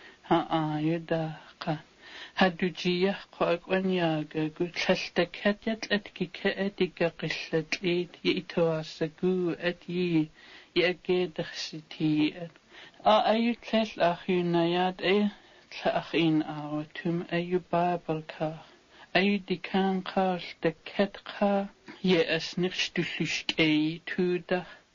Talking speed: 45 wpm